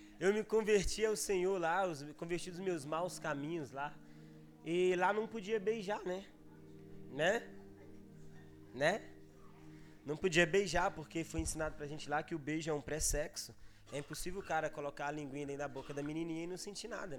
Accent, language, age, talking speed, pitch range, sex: Brazilian, Gujarati, 20-39, 180 wpm, 145-205 Hz, male